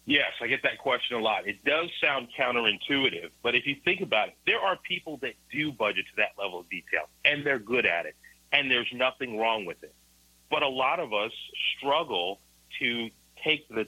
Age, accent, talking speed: 40-59, American, 210 wpm